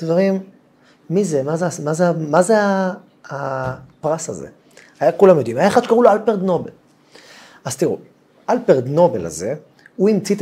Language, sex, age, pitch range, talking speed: Hebrew, male, 30-49, 140-190 Hz, 175 wpm